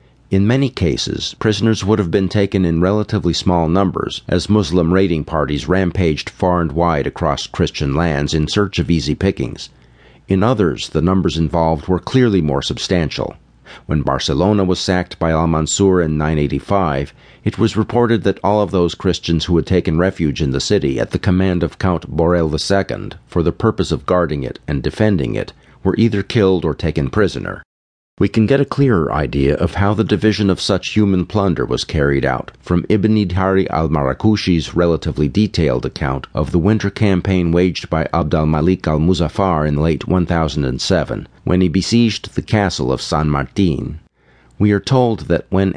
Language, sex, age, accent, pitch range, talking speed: English, male, 50-69, American, 80-100 Hz, 170 wpm